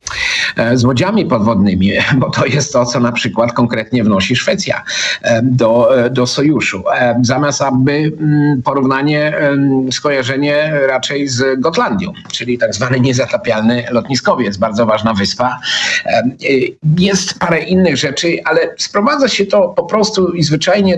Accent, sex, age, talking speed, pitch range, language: native, male, 50-69, 125 wpm, 120-175 Hz, Polish